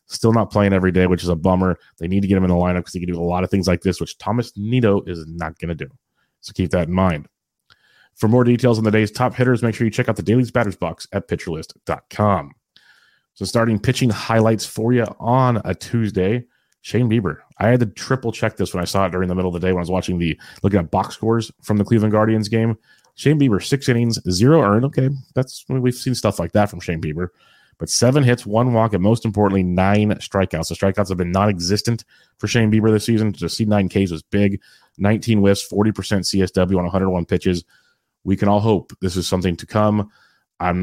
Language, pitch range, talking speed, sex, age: English, 90-110 Hz, 240 wpm, male, 30-49